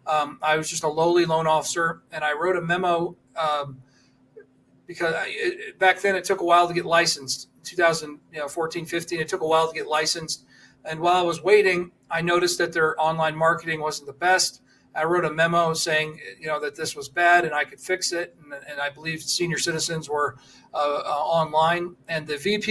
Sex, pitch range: male, 155-180 Hz